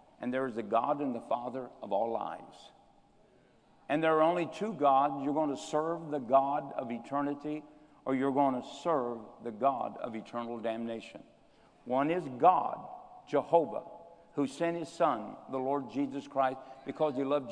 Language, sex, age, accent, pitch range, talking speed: English, male, 60-79, American, 140-195 Hz, 170 wpm